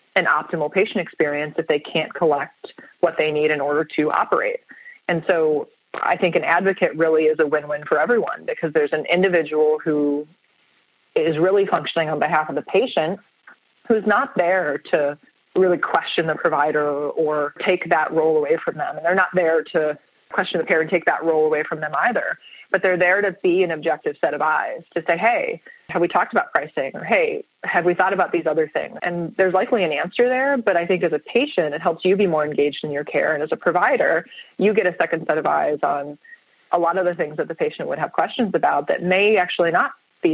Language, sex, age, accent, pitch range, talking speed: English, female, 30-49, American, 155-205 Hz, 220 wpm